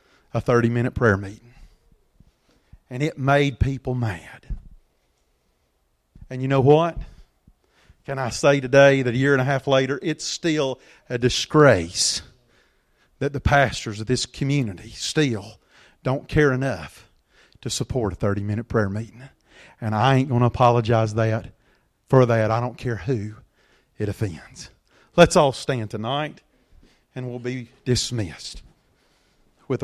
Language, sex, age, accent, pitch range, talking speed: English, male, 40-59, American, 120-180 Hz, 135 wpm